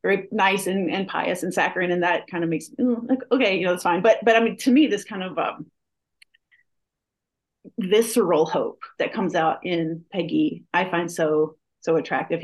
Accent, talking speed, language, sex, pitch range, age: American, 200 wpm, English, female, 165-220 Hz, 30-49